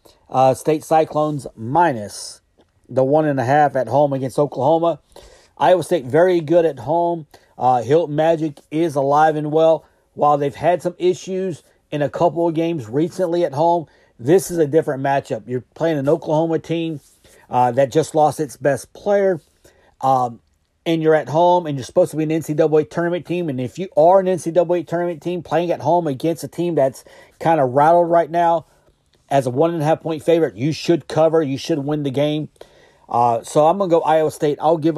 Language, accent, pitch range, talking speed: English, American, 140-170 Hz, 190 wpm